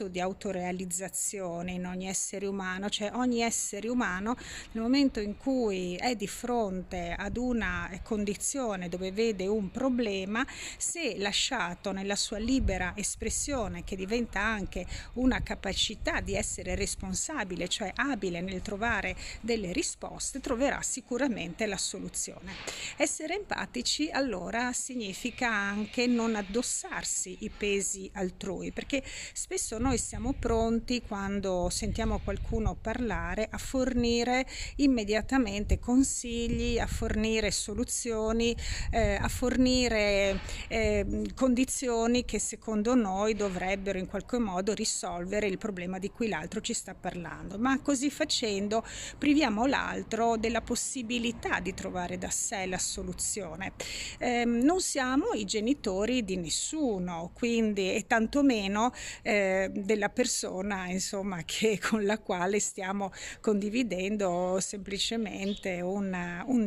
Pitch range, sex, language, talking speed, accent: 195-245 Hz, female, Italian, 120 wpm, native